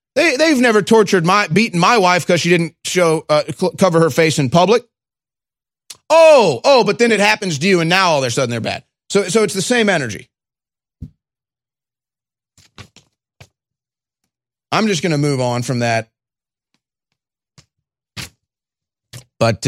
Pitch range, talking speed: 130-185 Hz, 150 wpm